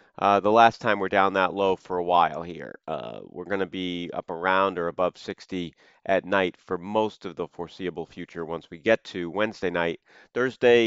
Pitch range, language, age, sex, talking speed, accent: 85-105 Hz, English, 40-59, male, 205 wpm, American